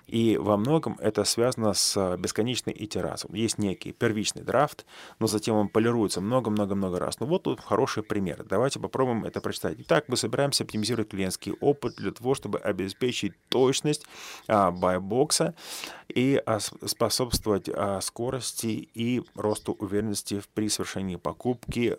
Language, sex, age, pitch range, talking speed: Russian, male, 30-49, 100-125 Hz, 140 wpm